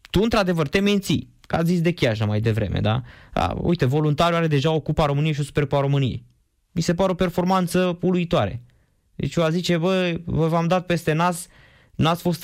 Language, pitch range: Romanian, 130-175 Hz